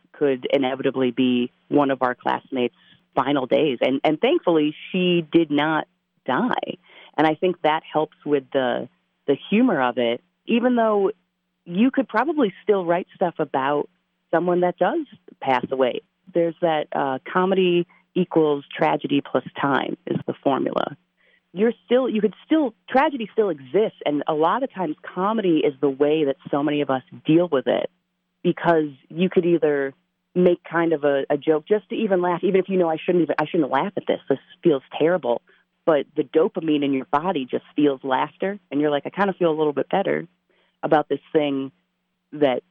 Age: 30-49